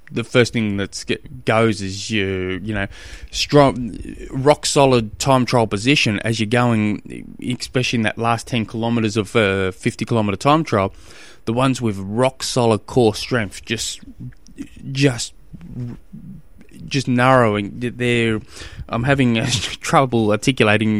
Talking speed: 135 wpm